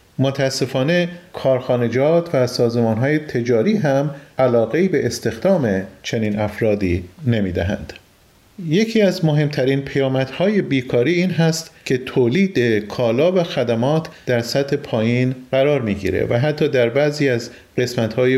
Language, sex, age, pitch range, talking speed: Persian, male, 40-59, 115-155 Hz, 115 wpm